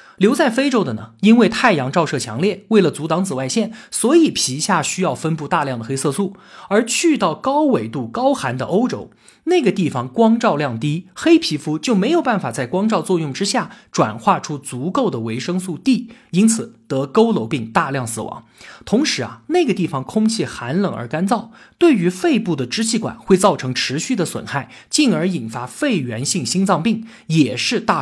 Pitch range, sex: 145-225 Hz, male